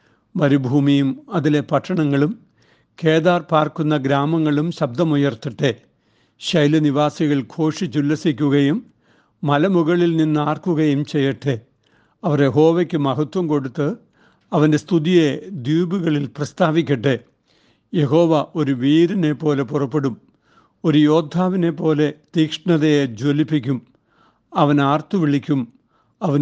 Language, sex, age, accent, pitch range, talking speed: Malayalam, male, 60-79, native, 140-165 Hz, 80 wpm